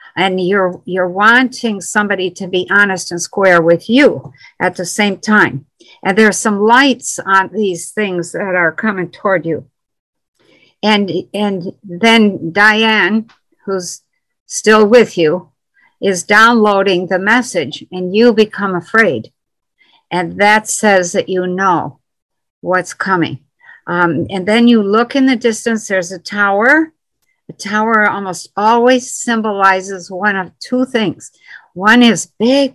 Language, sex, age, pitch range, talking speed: English, female, 60-79, 180-225 Hz, 135 wpm